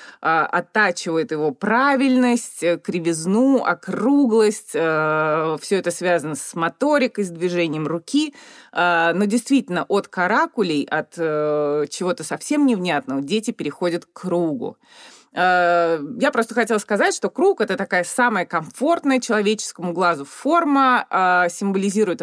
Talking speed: 105 wpm